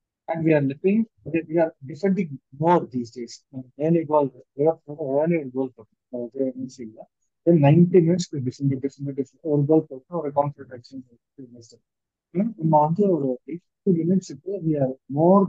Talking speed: 165 wpm